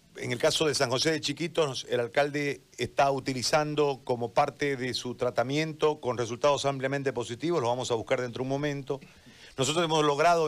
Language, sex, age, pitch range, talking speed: Spanish, male, 50-69, 120-150 Hz, 185 wpm